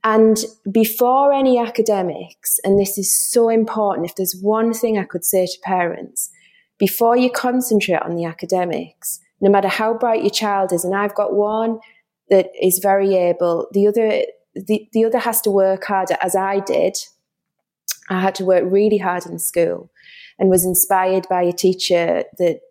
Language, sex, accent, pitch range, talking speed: English, female, British, 185-215 Hz, 175 wpm